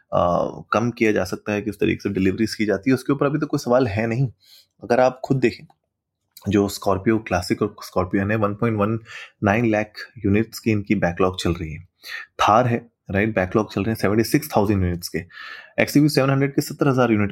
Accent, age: native, 20-39